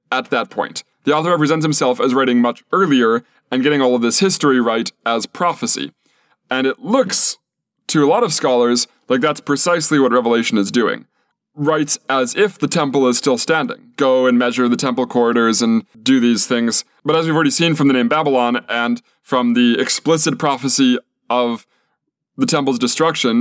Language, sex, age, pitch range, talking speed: English, male, 20-39, 120-155 Hz, 180 wpm